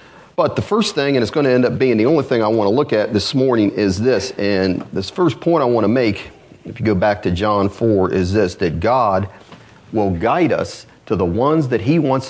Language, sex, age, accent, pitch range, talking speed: English, male, 40-59, American, 105-140 Hz, 250 wpm